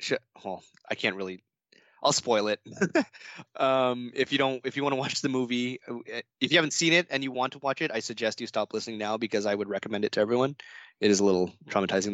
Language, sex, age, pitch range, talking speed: English, male, 20-39, 105-125 Hz, 230 wpm